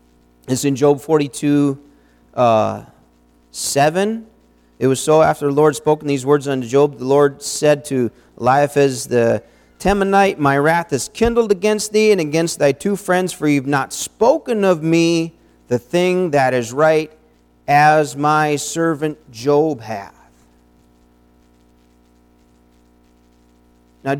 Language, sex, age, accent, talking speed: English, male, 40-59, American, 130 wpm